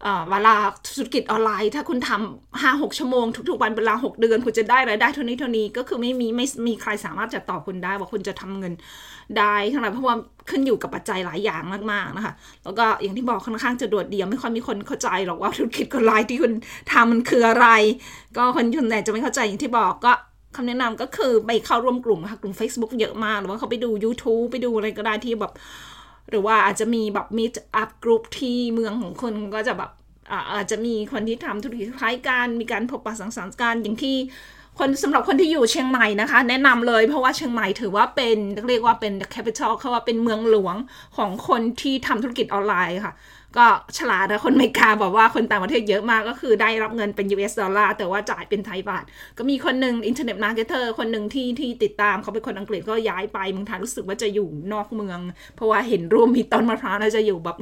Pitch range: 210-245 Hz